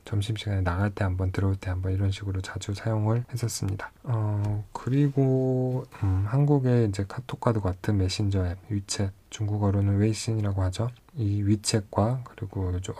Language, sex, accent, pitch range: Korean, male, native, 100-125 Hz